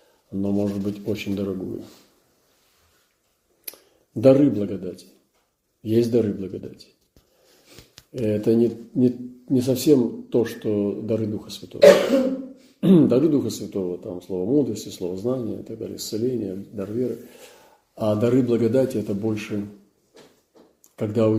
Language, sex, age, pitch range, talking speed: Russian, male, 40-59, 100-115 Hz, 105 wpm